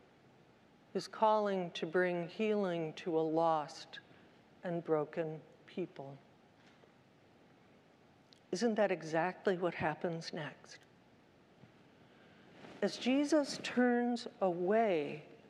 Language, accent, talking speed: English, American, 80 wpm